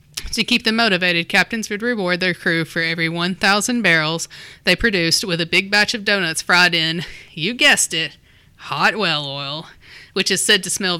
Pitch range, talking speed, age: 160-195 Hz, 185 wpm, 30-49